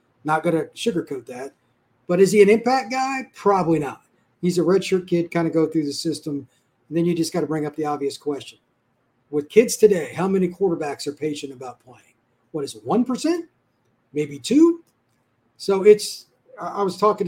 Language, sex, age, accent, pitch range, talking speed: English, male, 40-59, American, 145-185 Hz, 190 wpm